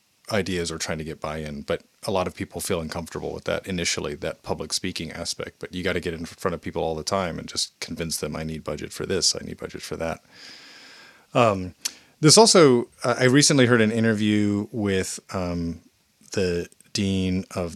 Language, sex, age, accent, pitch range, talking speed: English, male, 30-49, American, 90-110 Hz, 200 wpm